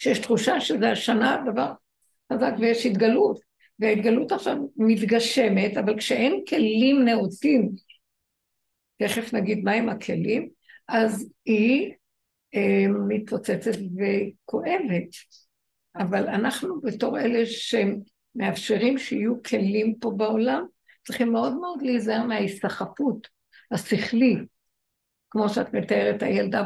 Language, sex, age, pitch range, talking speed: Hebrew, female, 60-79, 210-255 Hz, 95 wpm